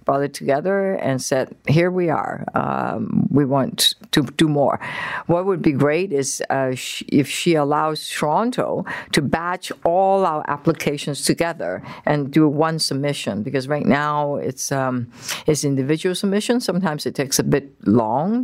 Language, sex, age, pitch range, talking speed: English, female, 60-79, 135-180 Hz, 160 wpm